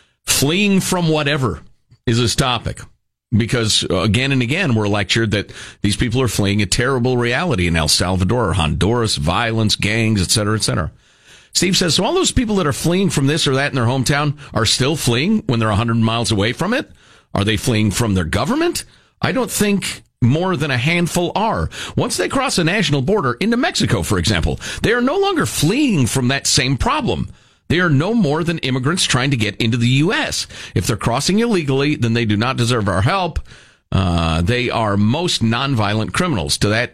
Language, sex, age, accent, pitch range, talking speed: English, male, 50-69, American, 110-155 Hz, 190 wpm